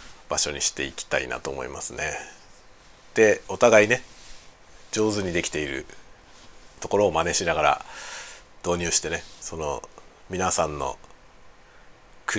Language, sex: Japanese, male